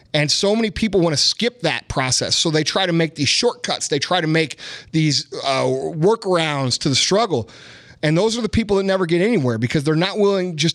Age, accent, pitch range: 30-49, American, 130-190 Hz